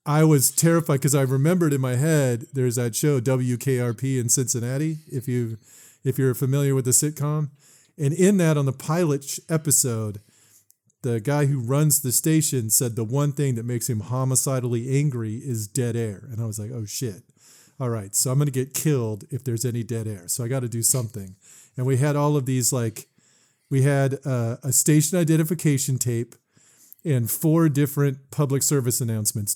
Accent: American